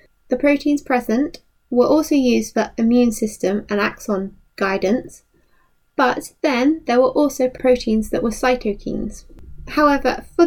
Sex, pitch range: female, 215-275 Hz